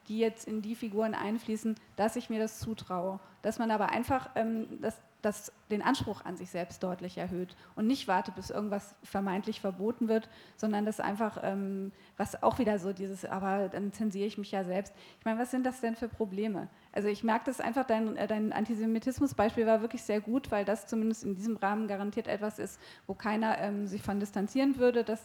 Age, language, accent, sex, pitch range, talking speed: 30-49, German, German, female, 200-225 Hz, 200 wpm